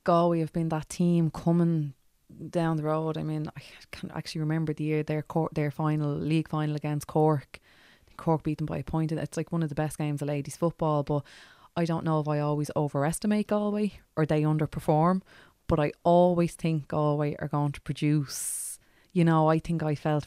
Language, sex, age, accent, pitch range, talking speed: English, female, 20-39, Irish, 140-155 Hz, 200 wpm